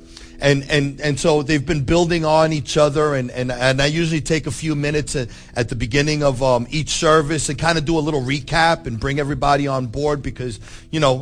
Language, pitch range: English, 130-160 Hz